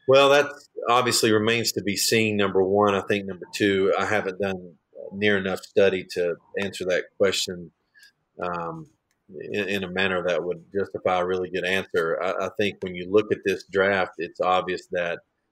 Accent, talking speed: American, 180 wpm